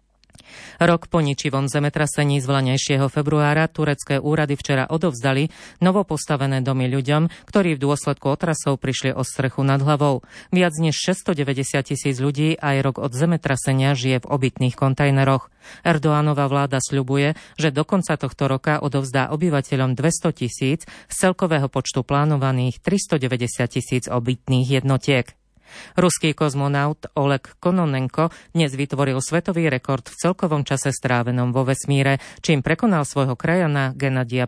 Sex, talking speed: female, 130 wpm